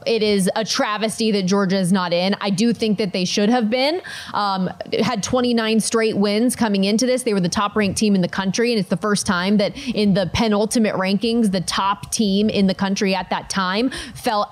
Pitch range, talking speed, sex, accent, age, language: 195-235 Hz, 225 wpm, female, American, 20-39, English